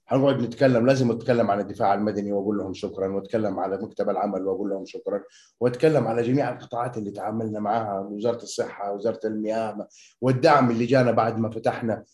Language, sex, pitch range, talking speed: Arabic, male, 100-125 Hz, 170 wpm